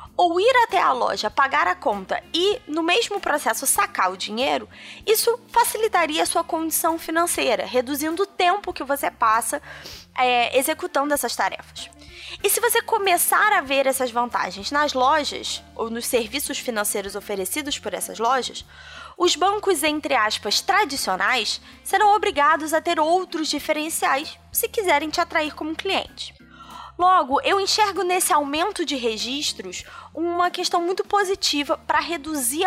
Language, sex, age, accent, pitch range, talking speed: Portuguese, female, 20-39, Brazilian, 275-360 Hz, 145 wpm